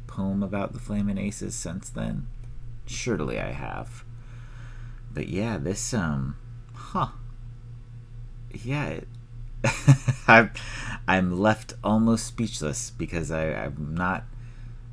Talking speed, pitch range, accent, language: 90 wpm, 90-120 Hz, American, English